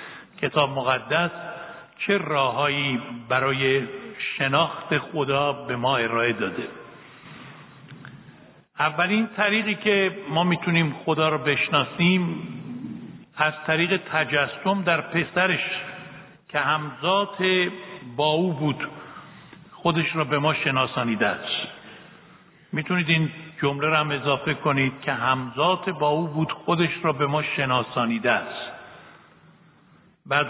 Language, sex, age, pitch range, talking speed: Persian, male, 60-79, 145-185 Hz, 105 wpm